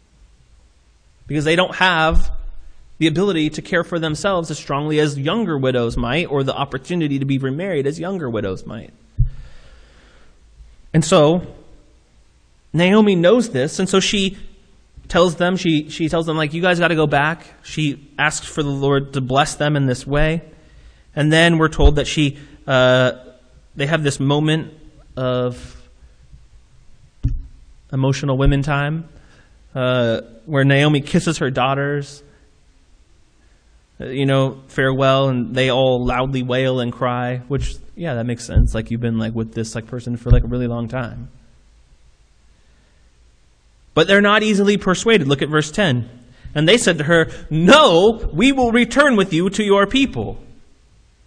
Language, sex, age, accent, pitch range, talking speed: English, male, 30-49, American, 115-165 Hz, 155 wpm